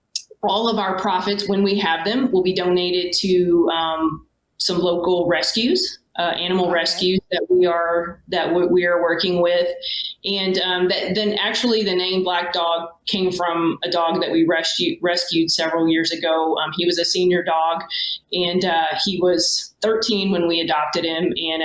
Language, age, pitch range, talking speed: English, 30-49, 170-190 Hz, 175 wpm